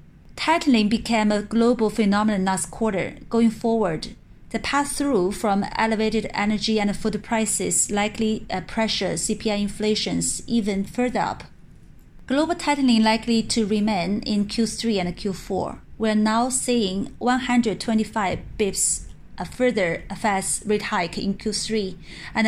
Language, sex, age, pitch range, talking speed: English, female, 30-49, 195-230 Hz, 125 wpm